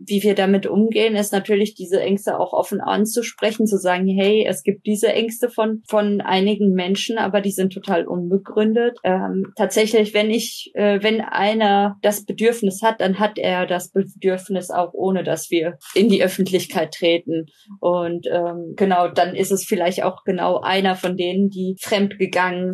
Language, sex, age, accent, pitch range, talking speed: German, female, 20-39, German, 180-210 Hz, 170 wpm